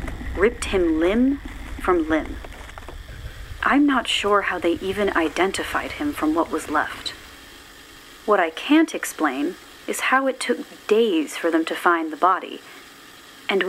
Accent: American